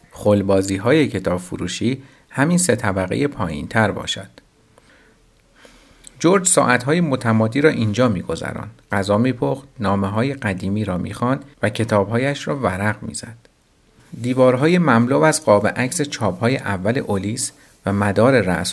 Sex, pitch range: male, 100-135 Hz